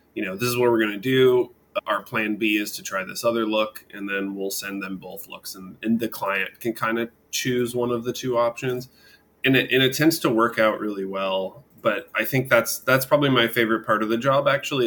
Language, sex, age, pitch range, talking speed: English, male, 20-39, 105-120 Hz, 240 wpm